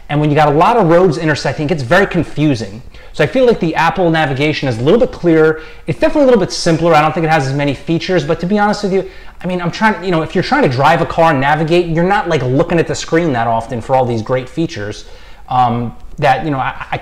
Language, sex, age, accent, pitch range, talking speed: English, male, 30-49, American, 120-170 Hz, 280 wpm